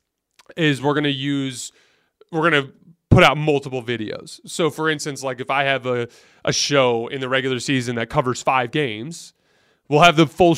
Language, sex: English, male